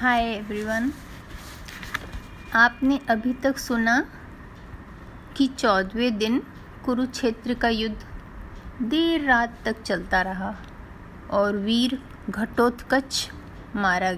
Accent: native